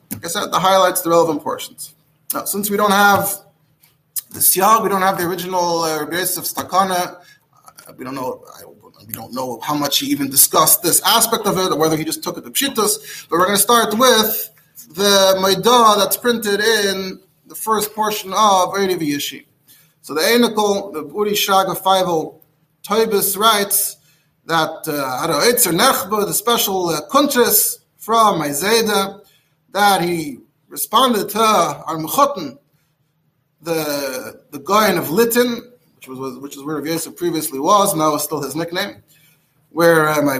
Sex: male